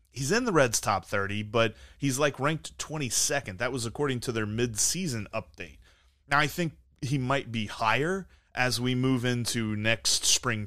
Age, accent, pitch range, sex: 30-49, American, 100-145 Hz, male